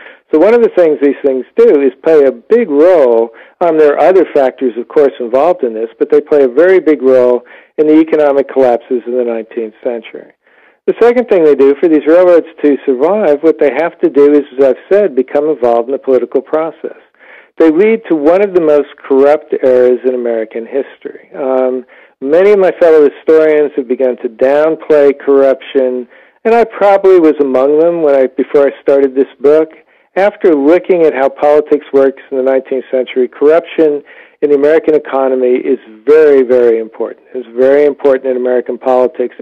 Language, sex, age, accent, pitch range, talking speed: English, male, 50-69, American, 130-165 Hz, 190 wpm